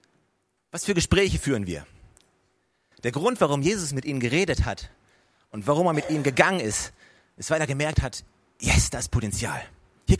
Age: 30-49